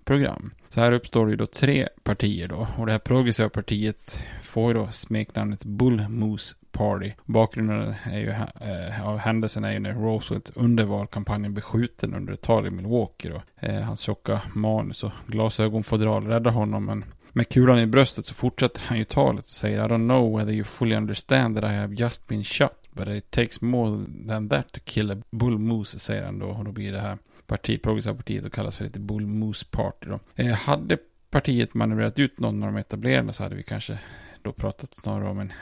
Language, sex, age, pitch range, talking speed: Swedish, male, 30-49, 105-120 Hz, 205 wpm